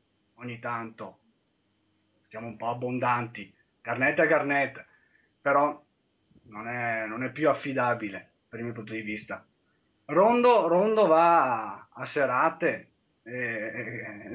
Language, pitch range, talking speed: Italian, 120-160 Hz, 115 wpm